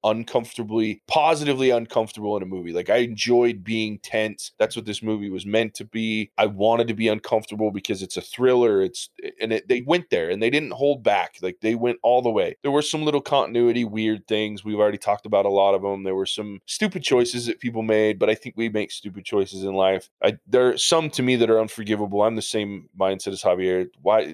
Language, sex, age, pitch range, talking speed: English, male, 20-39, 100-120 Hz, 225 wpm